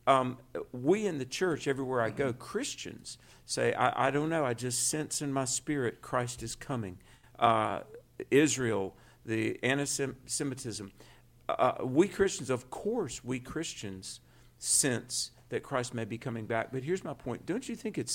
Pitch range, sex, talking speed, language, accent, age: 115-140 Hz, male, 160 wpm, English, American, 50-69